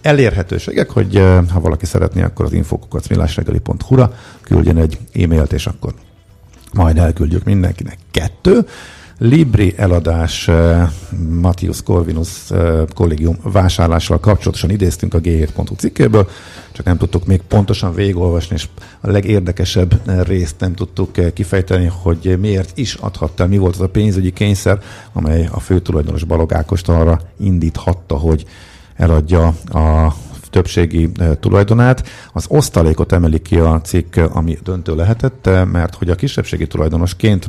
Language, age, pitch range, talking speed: Hungarian, 50-69, 85-100 Hz, 125 wpm